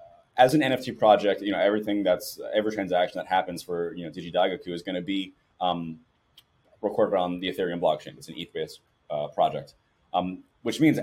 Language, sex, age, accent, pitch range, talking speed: English, male, 30-49, American, 95-125 Hz, 175 wpm